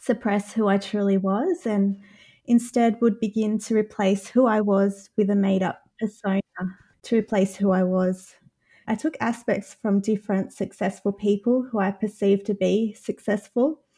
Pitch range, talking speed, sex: 195-235 Hz, 155 wpm, female